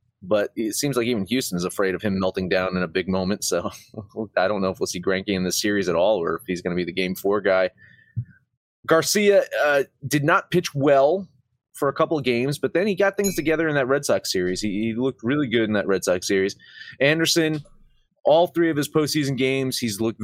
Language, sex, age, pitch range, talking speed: English, male, 30-49, 115-180 Hz, 235 wpm